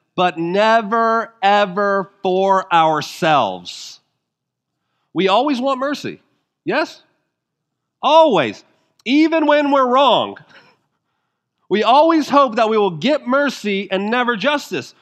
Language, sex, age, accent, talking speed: English, male, 40-59, American, 105 wpm